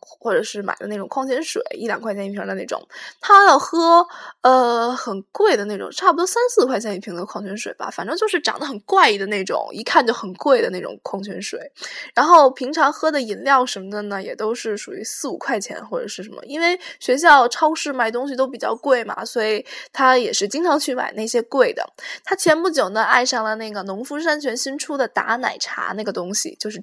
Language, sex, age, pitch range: Chinese, female, 10-29, 220-320 Hz